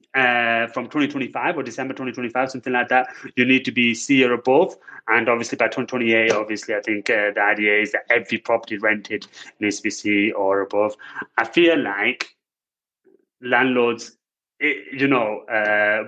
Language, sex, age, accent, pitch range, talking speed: English, male, 30-49, British, 115-135 Hz, 160 wpm